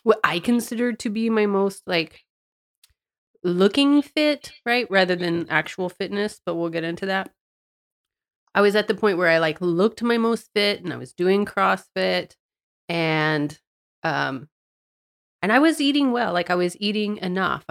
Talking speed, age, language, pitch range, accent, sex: 165 wpm, 30-49, English, 170-205 Hz, American, female